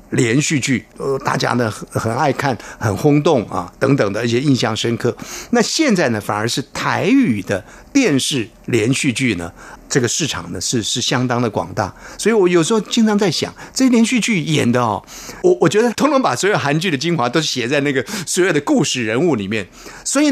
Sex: male